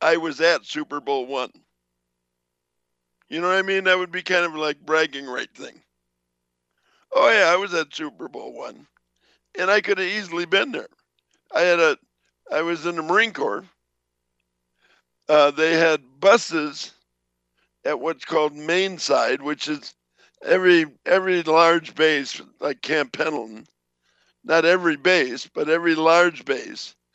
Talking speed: 155 wpm